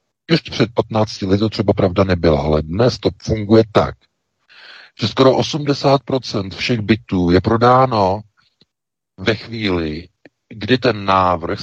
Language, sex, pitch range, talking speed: Czech, male, 95-115 Hz, 130 wpm